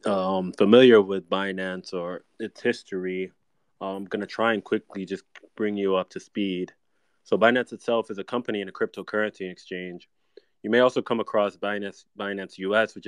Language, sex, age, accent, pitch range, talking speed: English, male, 20-39, American, 90-105 Hz, 170 wpm